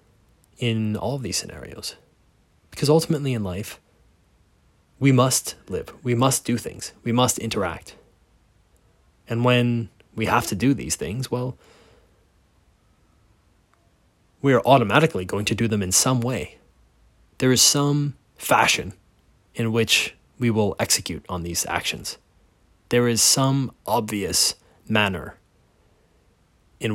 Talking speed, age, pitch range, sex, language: 125 wpm, 20-39, 95-120 Hz, male, English